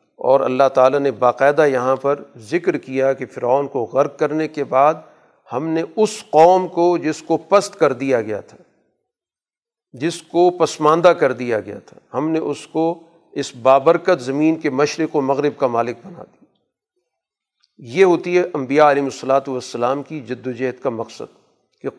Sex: male